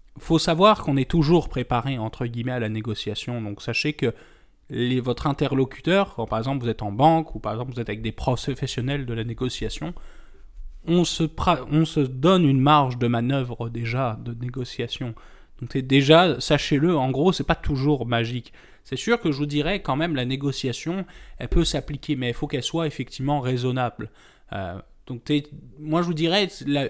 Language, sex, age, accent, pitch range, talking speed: French, male, 20-39, French, 120-150 Hz, 190 wpm